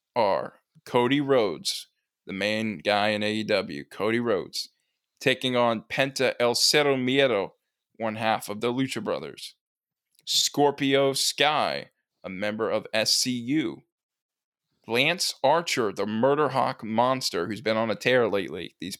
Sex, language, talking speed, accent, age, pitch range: male, English, 130 wpm, American, 20-39, 110-155 Hz